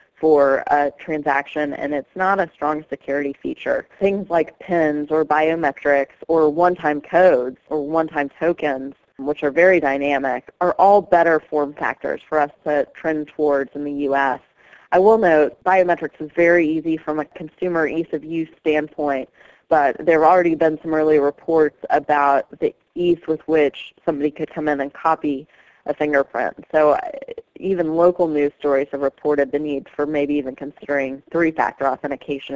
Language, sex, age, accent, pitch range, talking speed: English, female, 30-49, American, 145-160 Hz, 160 wpm